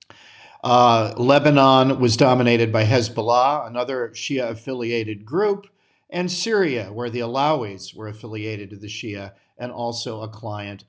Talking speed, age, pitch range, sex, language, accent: 130 wpm, 50-69, 110-150 Hz, male, English, American